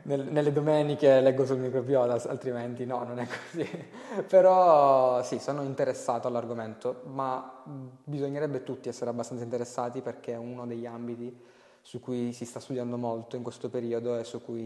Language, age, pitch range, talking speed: Italian, 20-39, 115-130 Hz, 155 wpm